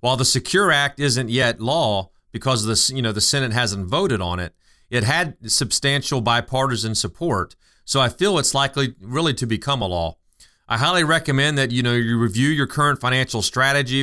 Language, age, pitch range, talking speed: English, 40-59, 115-145 Hz, 190 wpm